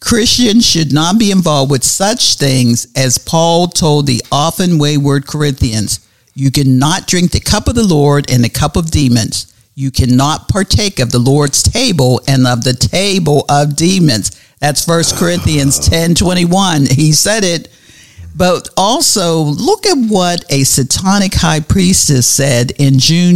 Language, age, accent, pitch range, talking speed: English, 50-69, American, 130-180 Hz, 155 wpm